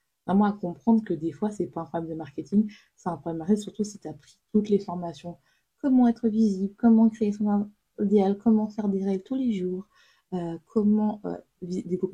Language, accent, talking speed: French, French, 215 wpm